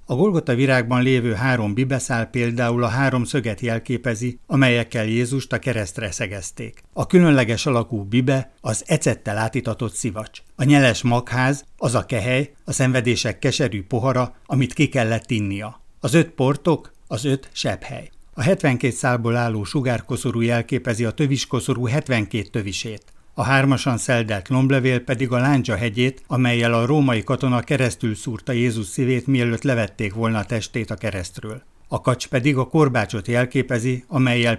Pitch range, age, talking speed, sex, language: 115-135 Hz, 60-79, 145 wpm, male, Hungarian